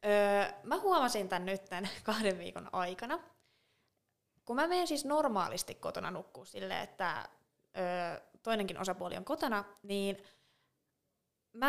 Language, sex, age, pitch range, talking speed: Finnish, female, 20-39, 195-255 Hz, 130 wpm